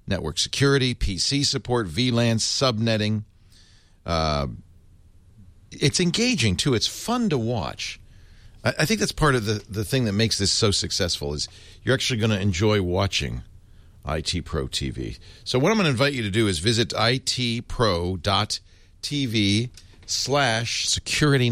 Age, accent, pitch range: 40-59, American, 95-125 Hz